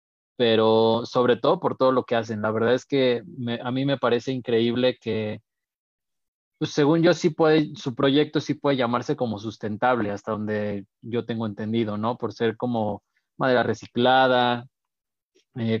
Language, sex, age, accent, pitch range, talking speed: Spanish, male, 20-39, Mexican, 110-130 Hz, 165 wpm